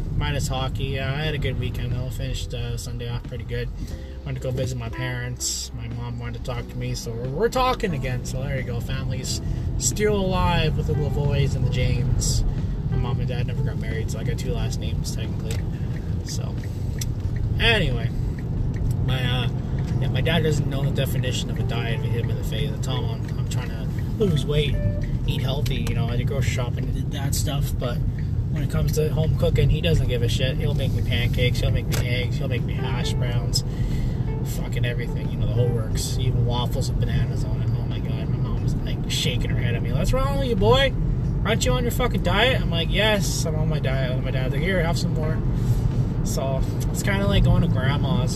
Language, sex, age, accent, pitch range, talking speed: English, male, 20-39, American, 120-135 Hz, 230 wpm